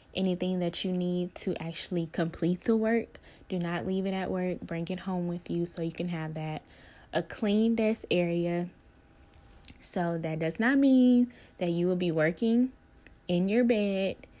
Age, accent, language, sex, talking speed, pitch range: 10-29, American, English, female, 175 wpm, 170-210 Hz